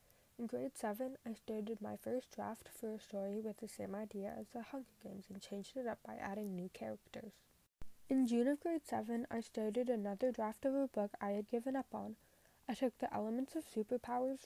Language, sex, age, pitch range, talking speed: English, female, 10-29, 200-255 Hz, 210 wpm